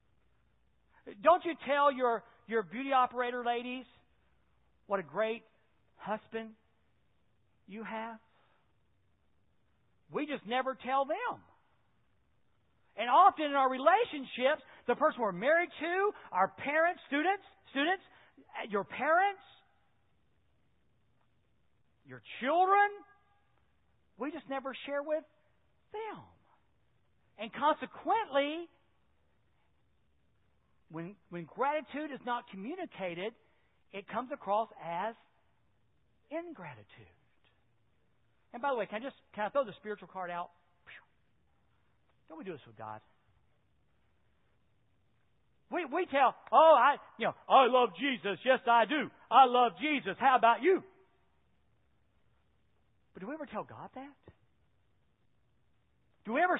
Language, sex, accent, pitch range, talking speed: English, male, American, 195-300 Hz, 110 wpm